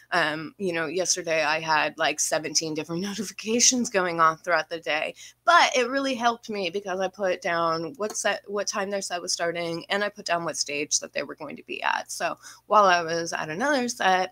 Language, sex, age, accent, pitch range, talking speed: English, female, 20-39, American, 165-215 Hz, 220 wpm